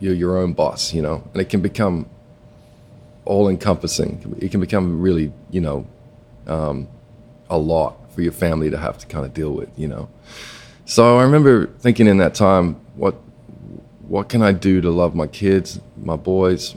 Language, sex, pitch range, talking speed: English, male, 85-100 Hz, 185 wpm